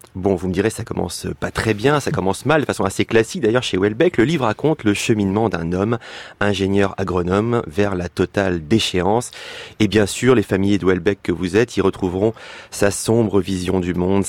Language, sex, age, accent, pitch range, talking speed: French, male, 30-49, French, 95-120 Hz, 200 wpm